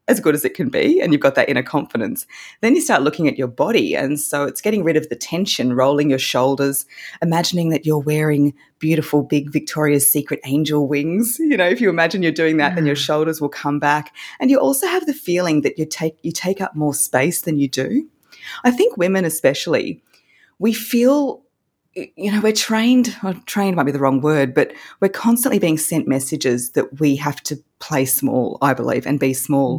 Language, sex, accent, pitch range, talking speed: English, female, Australian, 145-215 Hz, 210 wpm